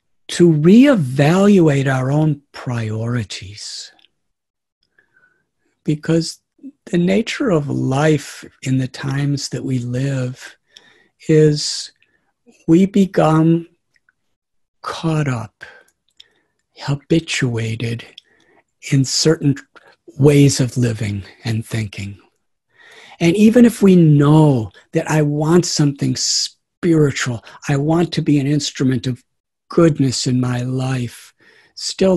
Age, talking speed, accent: 60-79, 95 wpm, American